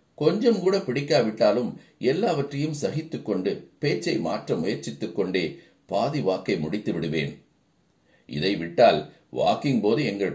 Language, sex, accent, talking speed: Tamil, male, native, 105 wpm